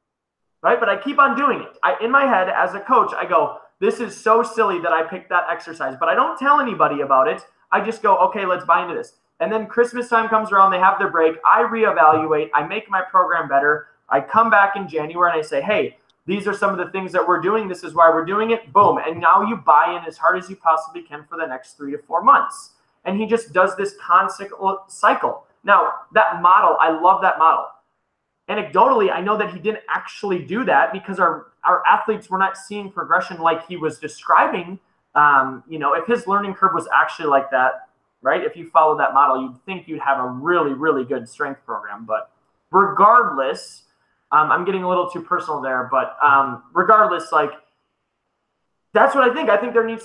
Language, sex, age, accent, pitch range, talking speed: English, male, 20-39, American, 160-225 Hz, 220 wpm